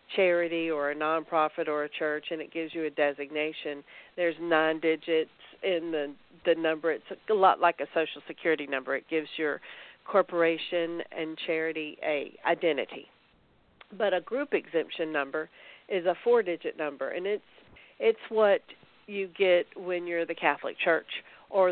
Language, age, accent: English, 50-69, American